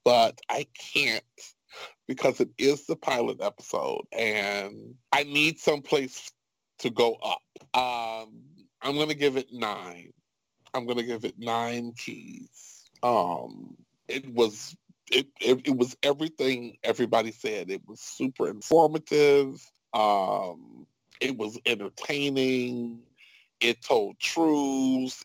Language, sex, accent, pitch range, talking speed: English, male, American, 125-185 Hz, 125 wpm